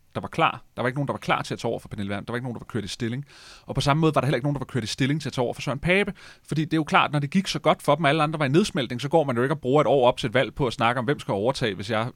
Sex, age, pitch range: male, 30-49, 110-145 Hz